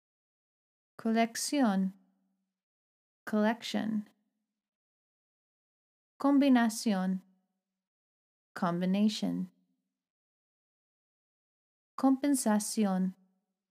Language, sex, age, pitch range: Spanish, female, 20-39, 195-225 Hz